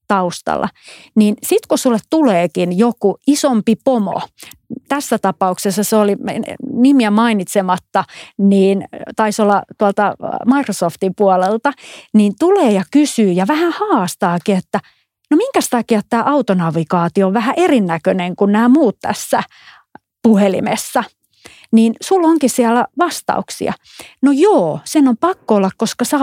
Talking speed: 125 wpm